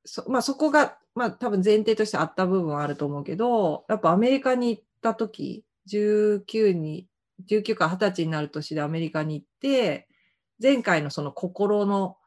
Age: 30-49